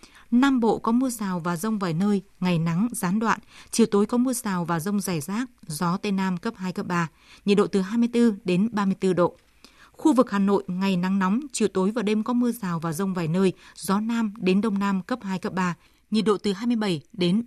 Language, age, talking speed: Vietnamese, 20-39, 235 wpm